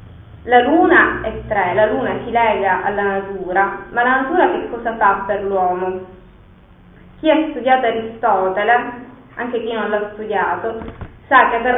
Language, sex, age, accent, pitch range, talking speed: Italian, female, 20-39, native, 200-240 Hz, 150 wpm